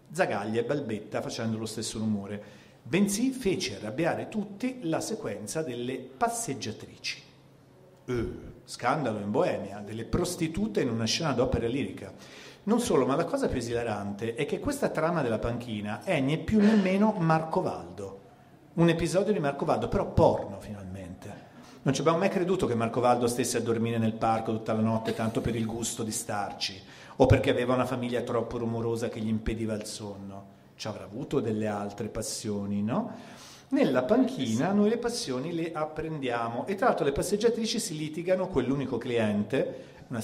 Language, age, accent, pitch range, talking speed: Italian, 40-59, native, 110-145 Hz, 165 wpm